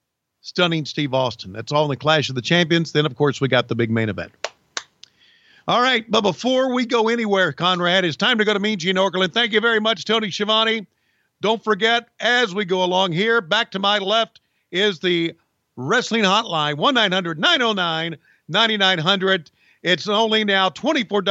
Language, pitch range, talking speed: English, 160-210 Hz, 170 wpm